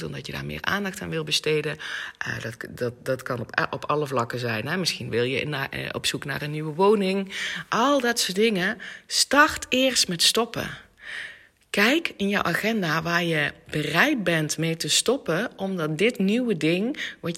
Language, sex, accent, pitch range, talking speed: Dutch, female, Dutch, 165-225 Hz, 180 wpm